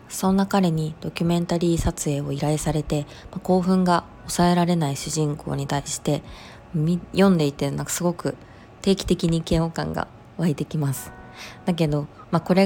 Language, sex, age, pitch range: Japanese, female, 20-39, 145-180 Hz